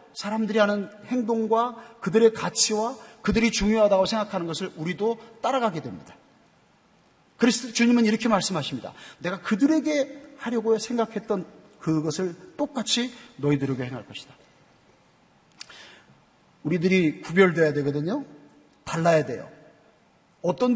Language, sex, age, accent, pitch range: Korean, male, 40-59, native, 190-245 Hz